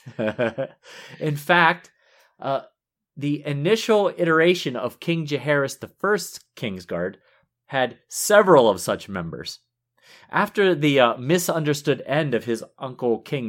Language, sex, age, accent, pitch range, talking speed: English, male, 30-49, American, 120-160 Hz, 110 wpm